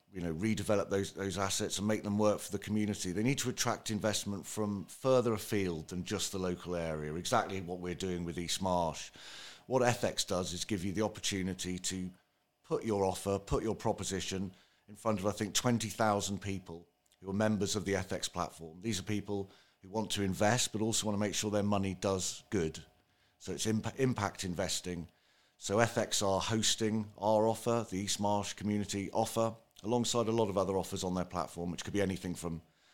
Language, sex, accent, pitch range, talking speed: English, male, British, 90-110 Hz, 200 wpm